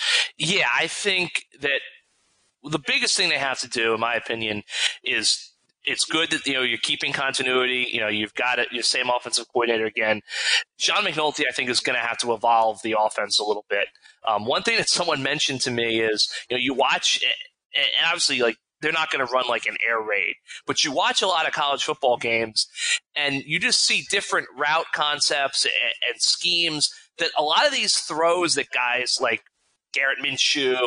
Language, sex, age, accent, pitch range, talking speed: English, male, 30-49, American, 125-175 Hz, 200 wpm